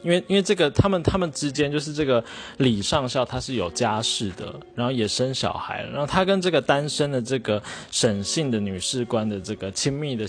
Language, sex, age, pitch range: Chinese, male, 20-39, 105-140 Hz